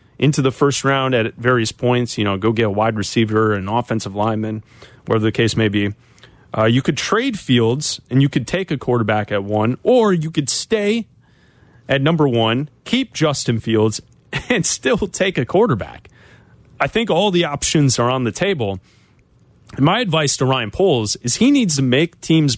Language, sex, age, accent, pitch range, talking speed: English, male, 30-49, American, 115-160 Hz, 190 wpm